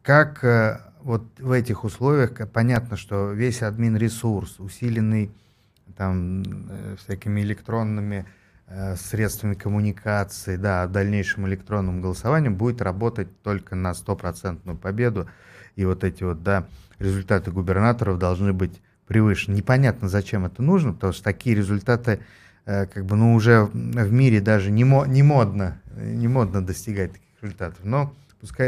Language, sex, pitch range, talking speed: Russian, male, 95-115 Hz, 125 wpm